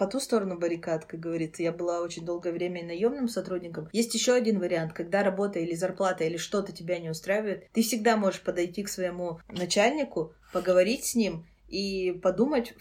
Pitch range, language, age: 170-200 Hz, Russian, 20-39